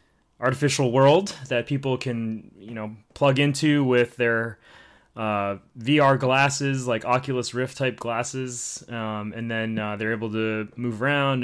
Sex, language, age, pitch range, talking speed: male, English, 20-39, 115-140 Hz, 145 wpm